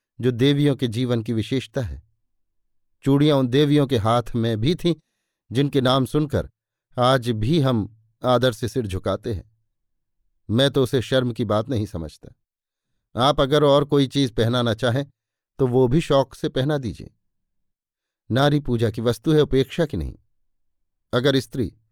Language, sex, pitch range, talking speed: Hindi, male, 110-145 Hz, 160 wpm